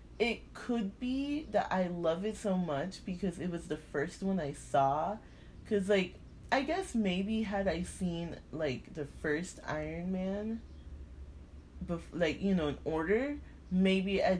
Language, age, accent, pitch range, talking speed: English, 20-39, American, 140-195 Hz, 155 wpm